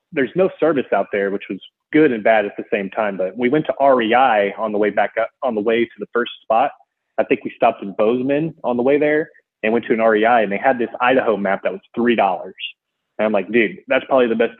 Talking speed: 255 wpm